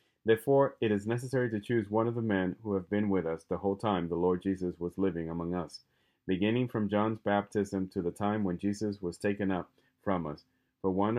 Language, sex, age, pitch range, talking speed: English, male, 30-49, 90-110 Hz, 220 wpm